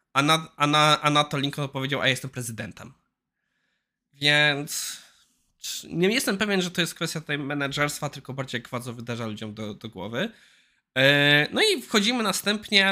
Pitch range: 130-155 Hz